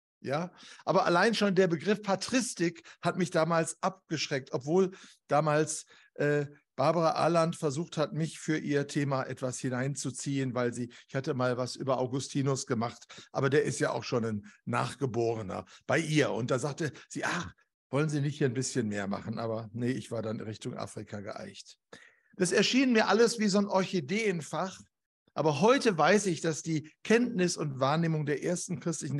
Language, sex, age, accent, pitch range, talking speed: German, male, 60-79, German, 135-185 Hz, 175 wpm